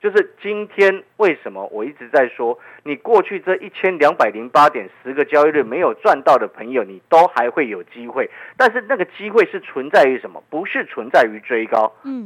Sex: male